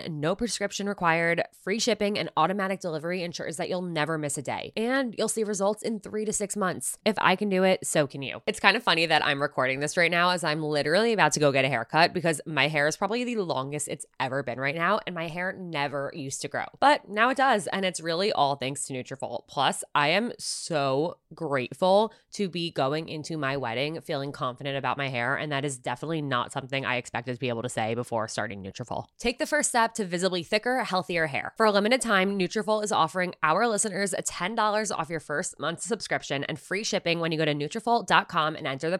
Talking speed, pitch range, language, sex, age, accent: 230 wpm, 145-200 Hz, English, female, 20-39, American